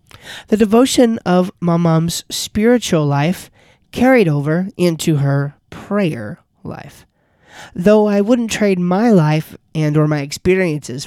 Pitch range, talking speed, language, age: 150-200 Hz, 120 wpm, English, 20-39